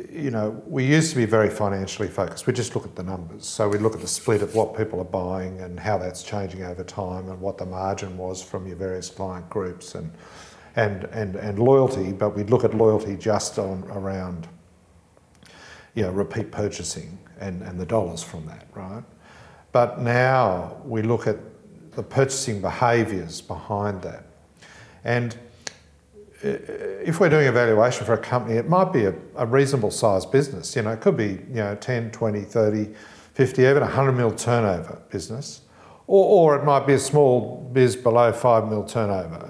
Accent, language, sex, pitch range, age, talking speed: Australian, English, male, 100-130 Hz, 50-69, 185 wpm